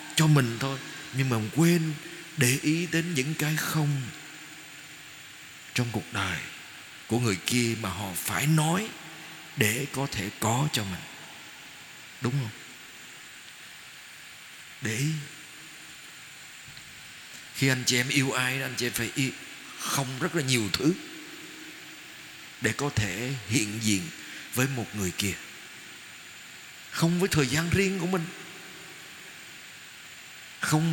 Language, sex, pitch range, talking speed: Vietnamese, male, 130-170 Hz, 125 wpm